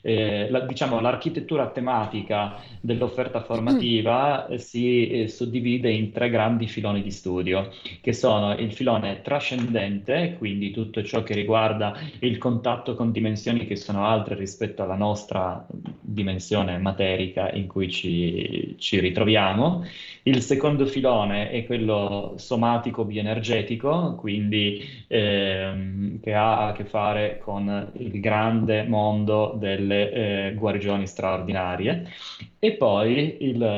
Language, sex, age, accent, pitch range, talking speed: Italian, male, 20-39, native, 100-120 Hz, 120 wpm